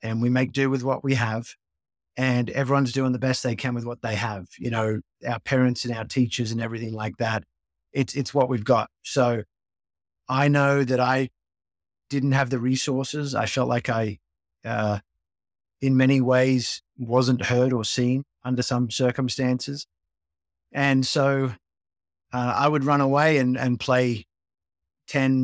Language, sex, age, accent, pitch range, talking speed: English, male, 30-49, Australian, 110-135 Hz, 165 wpm